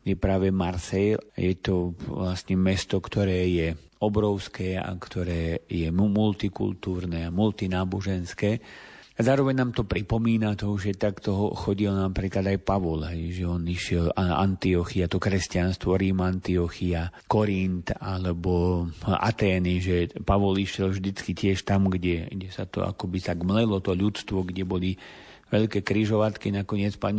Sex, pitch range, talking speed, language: male, 90-100 Hz, 135 wpm, Slovak